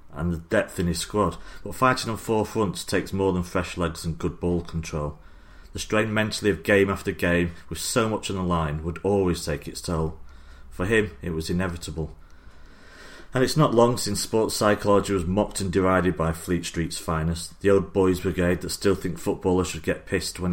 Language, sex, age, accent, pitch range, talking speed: English, male, 30-49, British, 85-105 Hz, 205 wpm